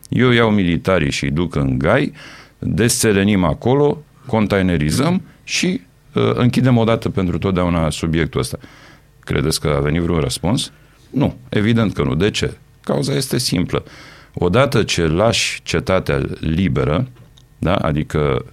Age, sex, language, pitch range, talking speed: 50-69, male, Romanian, 80-115 Hz, 130 wpm